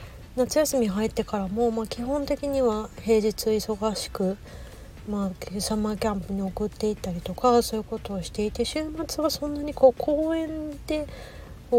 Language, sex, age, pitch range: Japanese, female, 40-59, 190-230 Hz